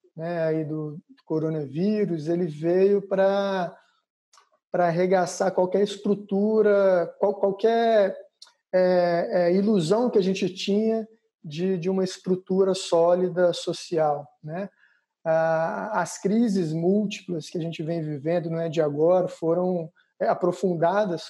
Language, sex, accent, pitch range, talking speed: Portuguese, male, Brazilian, 165-195 Hz, 115 wpm